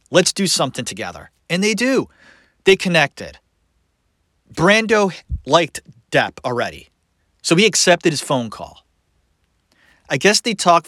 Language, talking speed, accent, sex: English, 125 wpm, American, male